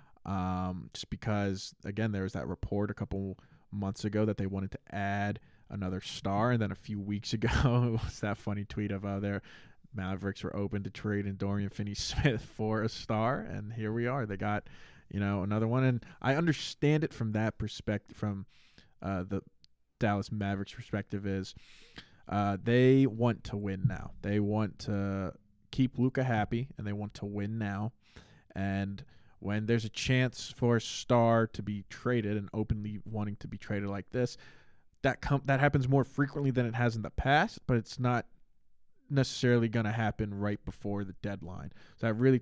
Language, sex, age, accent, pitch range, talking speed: English, male, 20-39, American, 100-120 Hz, 185 wpm